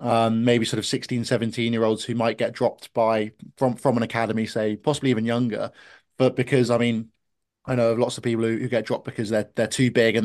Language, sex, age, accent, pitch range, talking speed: English, male, 20-39, British, 115-130 Hz, 240 wpm